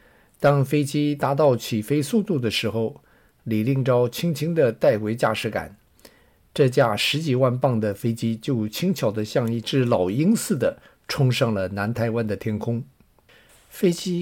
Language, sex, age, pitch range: Chinese, male, 50-69, 110-140 Hz